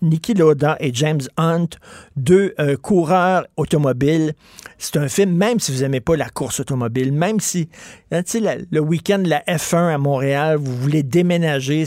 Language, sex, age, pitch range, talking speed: French, male, 50-69, 140-175 Hz, 180 wpm